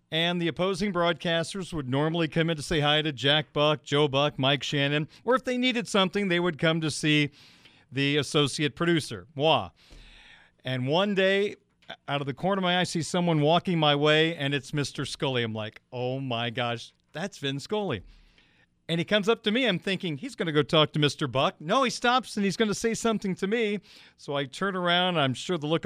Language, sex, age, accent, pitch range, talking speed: English, male, 40-59, American, 145-215 Hz, 225 wpm